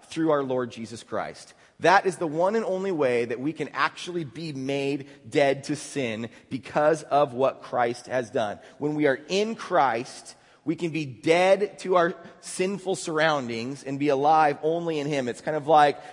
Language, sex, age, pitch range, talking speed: English, male, 30-49, 135-160 Hz, 185 wpm